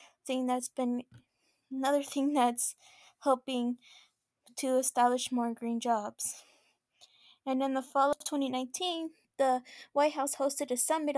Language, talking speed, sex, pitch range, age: English, 130 wpm, female, 255-285 Hz, 20-39